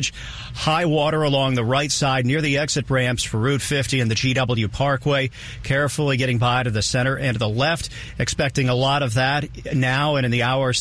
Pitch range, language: 120-145 Hz, English